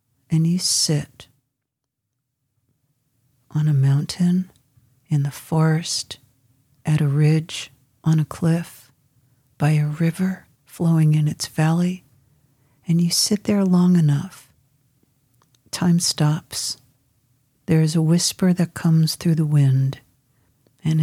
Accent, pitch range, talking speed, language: American, 130-170 Hz, 115 wpm, English